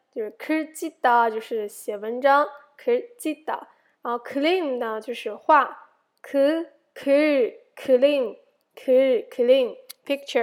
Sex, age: female, 10-29